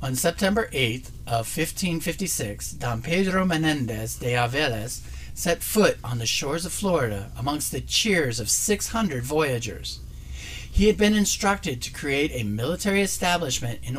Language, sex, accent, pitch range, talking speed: English, male, American, 110-165 Hz, 140 wpm